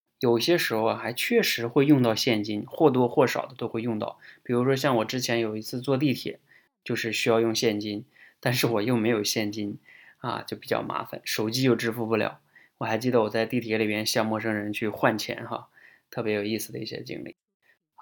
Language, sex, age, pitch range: Chinese, male, 20-39, 115-150 Hz